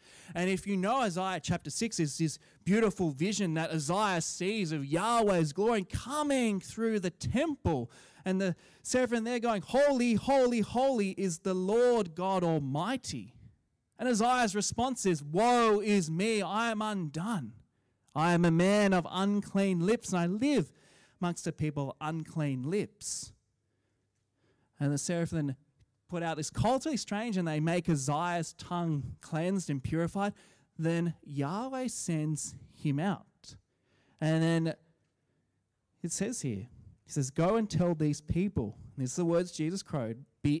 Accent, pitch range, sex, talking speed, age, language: Australian, 150-200 Hz, male, 150 wpm, 20-39, English